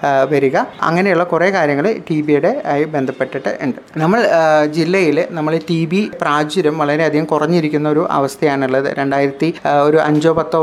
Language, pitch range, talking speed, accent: Malayalam, 145-175 Hz, 130 wpm, native